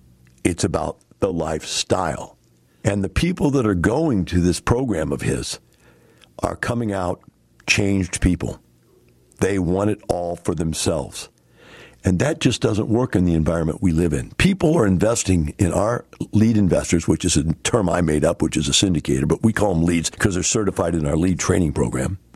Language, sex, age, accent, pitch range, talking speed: English, male, 60-79, American, 80-110 Hz, 180 wpm